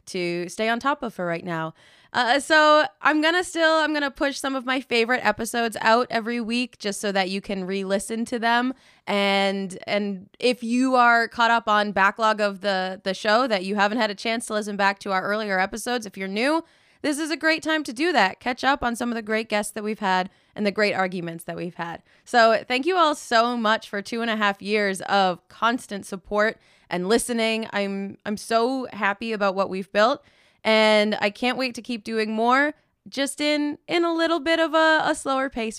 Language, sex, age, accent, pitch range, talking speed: English, female, 20-39, American, 195-255 Hz, 220 wpm